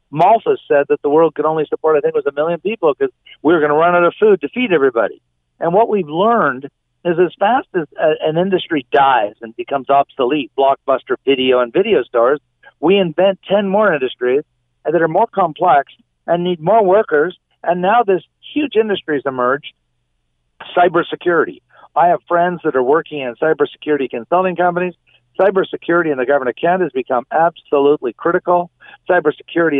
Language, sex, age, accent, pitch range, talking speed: English, male, 50-69, American, 140-190 Hz, 175 wpm